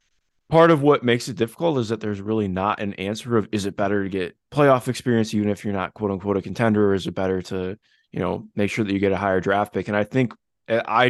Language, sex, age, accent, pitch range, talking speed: English, male, 20-39, American, 95-115 Hz, 265 wpm